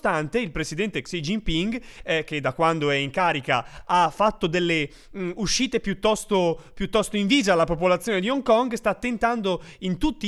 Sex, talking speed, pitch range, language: male, 175 wpm, 155-215 Hz, Italian